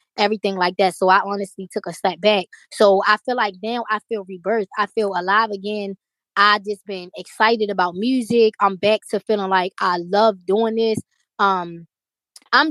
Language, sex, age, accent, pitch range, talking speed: English, female, 20-39, American, 195-225 Hz, 185 wpm